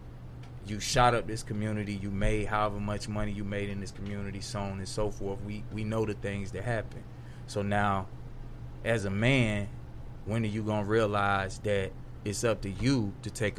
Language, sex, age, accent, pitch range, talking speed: English, male, 20-39, American, 105-120 Hz, 200 wpm